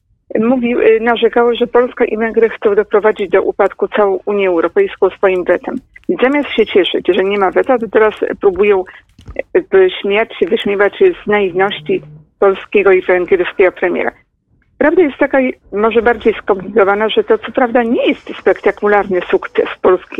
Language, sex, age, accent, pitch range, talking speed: Polish, female, 50-69, native, 200-280 Hz, 150 wpm